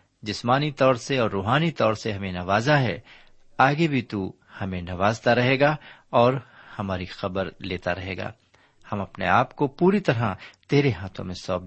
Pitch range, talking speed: 95-130 Hz, 170 wpm